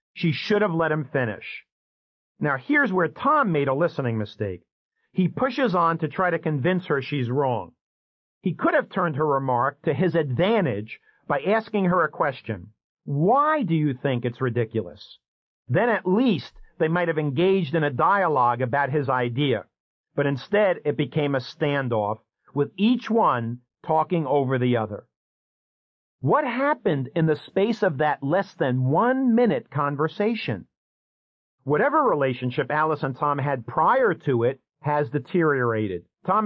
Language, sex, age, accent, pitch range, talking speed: English, male, 50-69, American, 125-180 Hz, 155 wpm